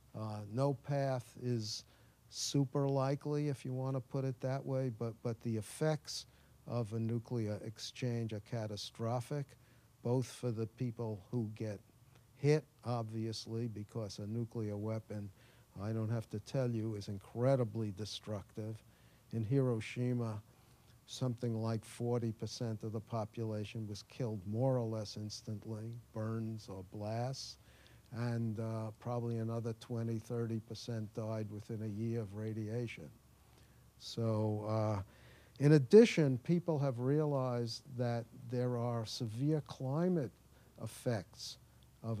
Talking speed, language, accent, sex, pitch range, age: 125 wpm, English, American, male, 110-130 Hz, 50-69